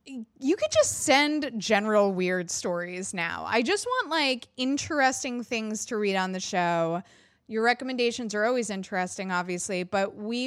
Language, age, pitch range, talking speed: English, 20-39, 190-275 Hz, 155 wpm